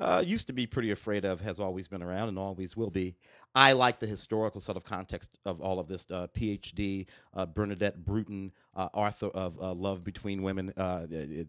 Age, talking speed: 40-59, 210 wpm